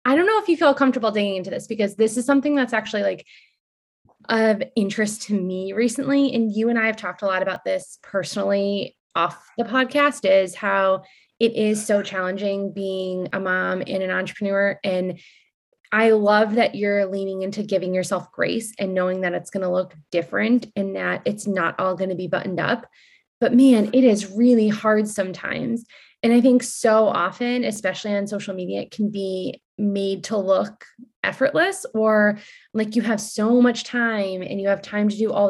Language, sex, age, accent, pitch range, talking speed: English, female, 20-39, American, 195-240 Hz, 190 wpm